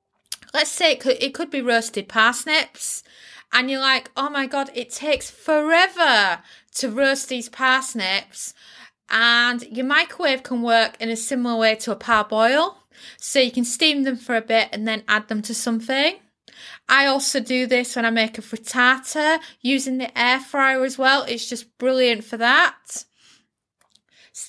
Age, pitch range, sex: 30-49, 220-270 Hz, female